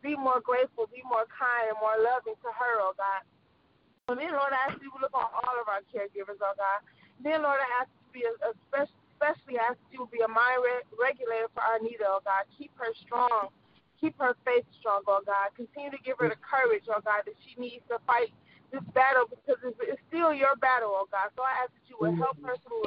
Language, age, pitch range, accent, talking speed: English, 30-49, 215-275 Hz, American, 245 wpm